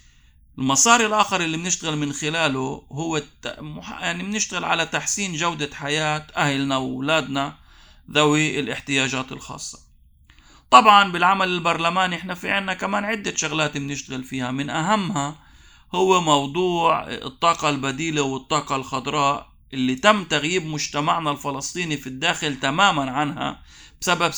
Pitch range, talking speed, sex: 135-165 Hz, 120 wpm, male